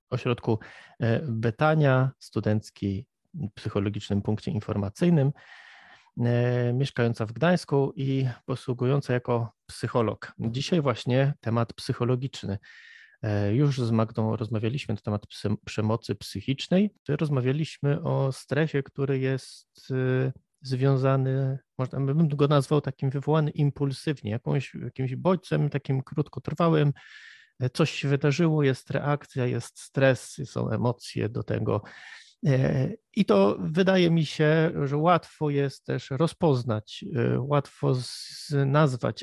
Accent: native